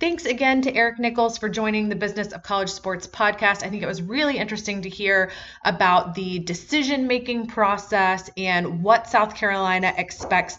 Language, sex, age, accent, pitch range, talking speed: English, female, 20-39, American, 180-230 Hz, 170 wpm